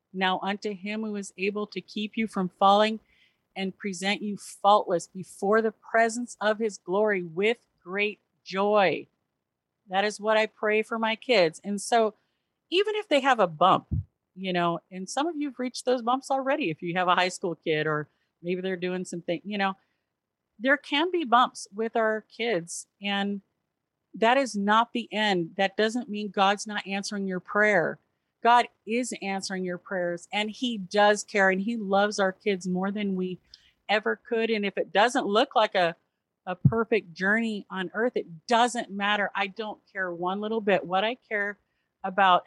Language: English